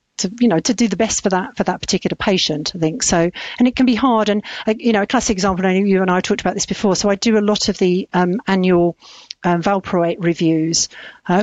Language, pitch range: English, 180-225 Hz